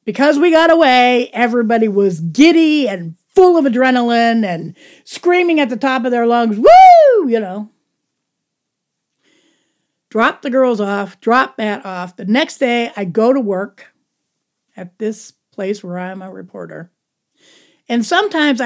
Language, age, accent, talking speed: English, 50-69, American, 150 wpm